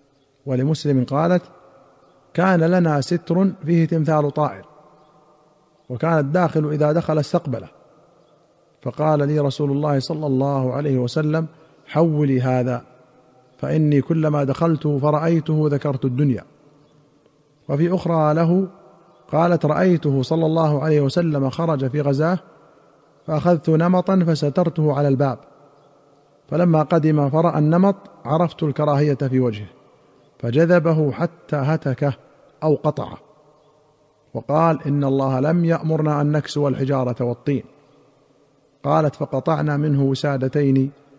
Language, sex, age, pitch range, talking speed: Arabic, male, 50-69, 135-160 Hz, 105 wpm